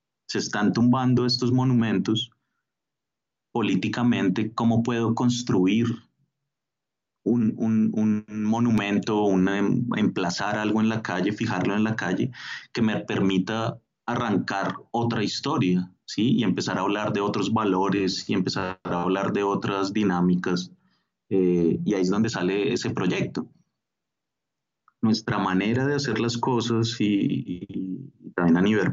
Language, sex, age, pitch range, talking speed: Spanish, male, 30-49, 95-115 Hz, 130 wpm